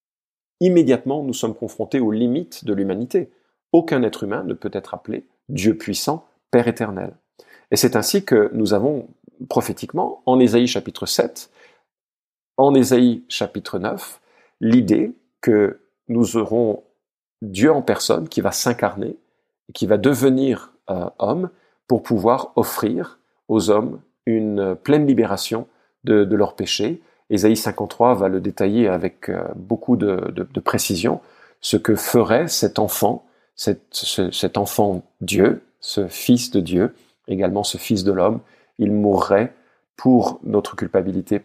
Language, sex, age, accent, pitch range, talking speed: French, male, 40-59, French, 100-125 Hz, 140 wpm